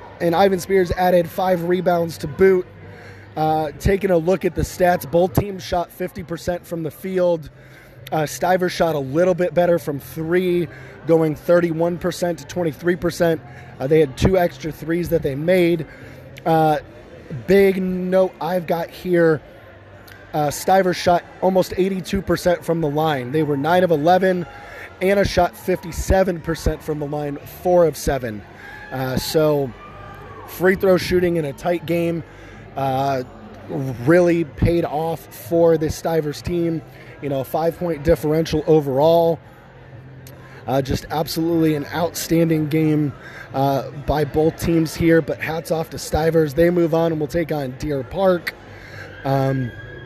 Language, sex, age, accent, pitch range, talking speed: English, male, 20-39, American, 135-175 Hz, 145 wpm